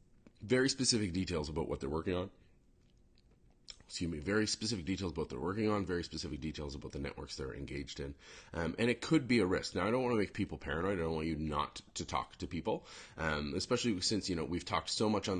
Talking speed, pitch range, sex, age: 240 wpm, 75-100 Hz, male, 30-49